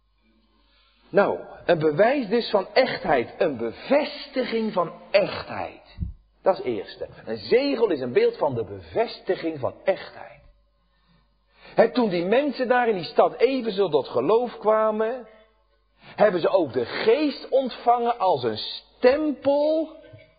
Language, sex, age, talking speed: Dutch, male, 50-69, 130 wpm